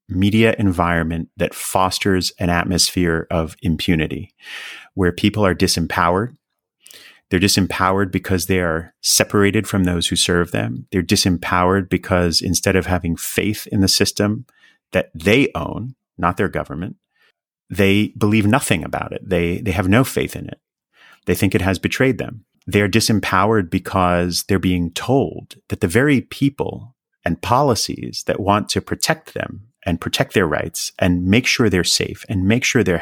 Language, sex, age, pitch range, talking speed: English, male, 30-49, 90-110 Hz, 160 wpm